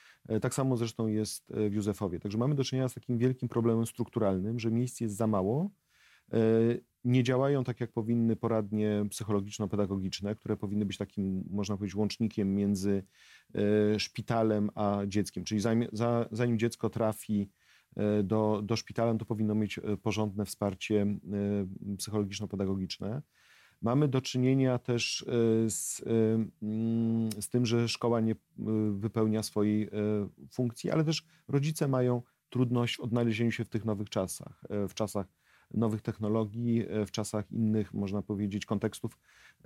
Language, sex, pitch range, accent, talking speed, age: Polish, male, 105-120 Hz, native, 130 wpm, 40-59